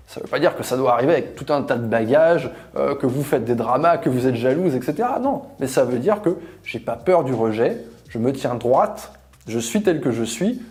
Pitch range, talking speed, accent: 125-185 Hz, 265 wpm, French